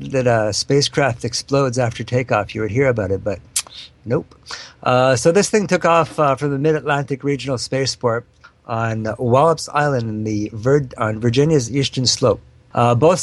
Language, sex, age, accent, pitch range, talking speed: English, male, 50-69, American, 115-145 Hz, 170 wpm